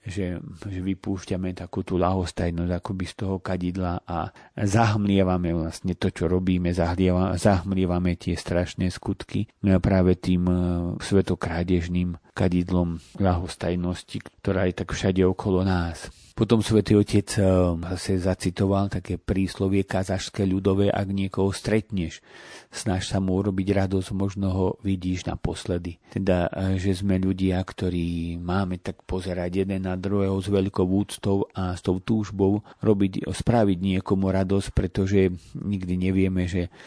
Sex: male